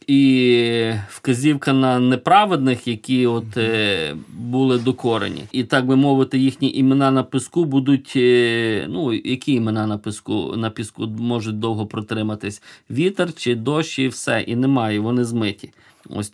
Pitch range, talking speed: 115-150 Hz, 145 wpm